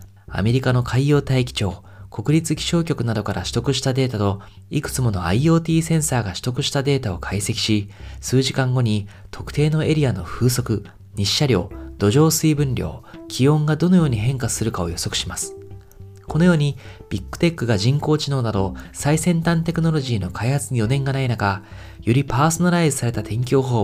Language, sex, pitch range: Japanese, male, 100-145 Hz